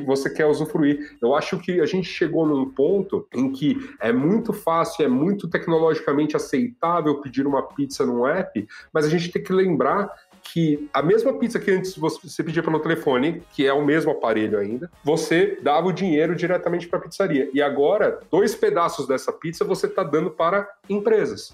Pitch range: 140-190 Hz